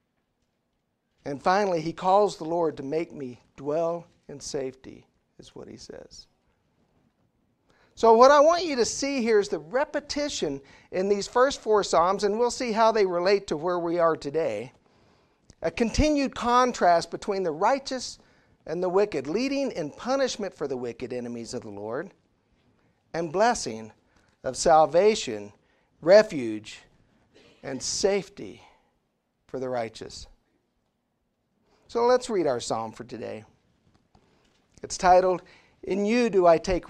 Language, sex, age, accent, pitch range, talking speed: English, male, 50-69, American, 145-230 Hz, 140 wpm